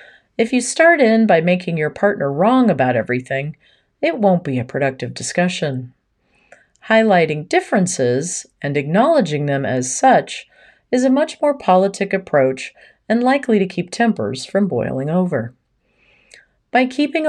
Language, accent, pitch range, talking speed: English, American, 145-245 Hz, 140 wpm